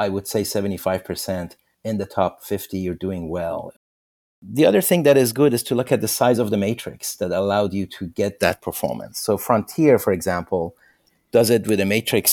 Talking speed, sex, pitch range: 205 wpm, male, 90-115 Hz